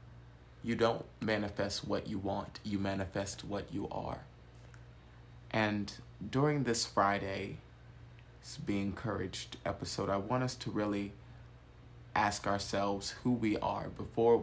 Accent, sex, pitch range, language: American, male, 100-115 Hz, English